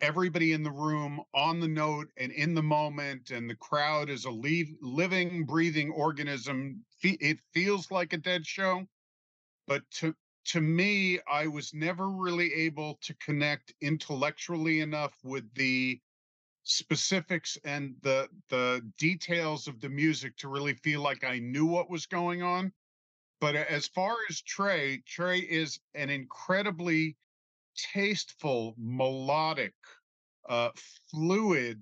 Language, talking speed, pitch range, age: English, 135 wpm, 135-170 Hz, 40-59